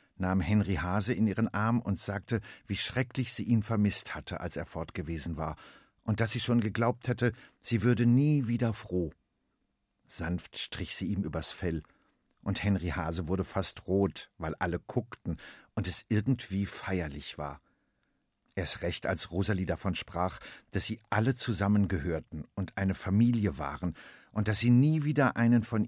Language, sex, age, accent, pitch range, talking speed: German, male, 50-69, German, 85-110 Hz, 160 wpm